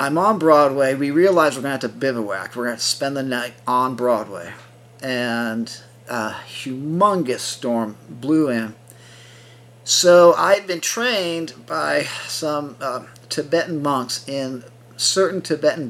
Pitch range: 120-155 Hz